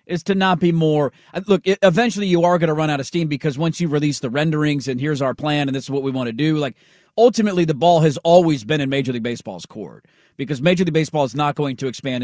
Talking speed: 265 wpm